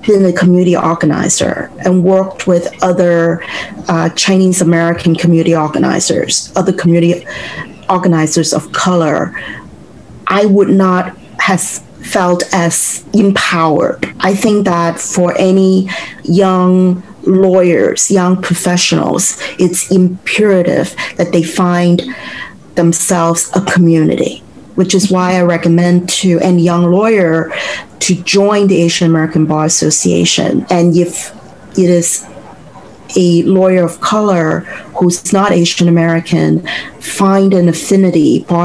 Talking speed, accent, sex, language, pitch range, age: 115 wpm, American, female, English, 170-190 Hz, 40-59